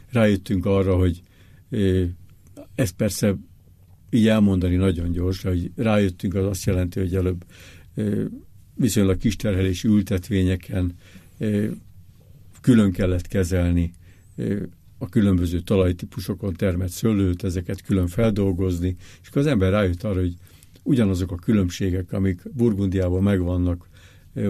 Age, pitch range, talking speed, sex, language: 60-79, 90-105 Hz, 120 wpm, male, Hungarian